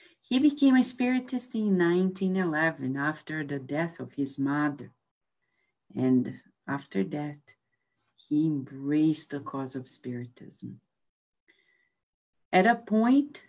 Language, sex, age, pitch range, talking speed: English, female, 50-69, 140-195 Hz, 105 wpm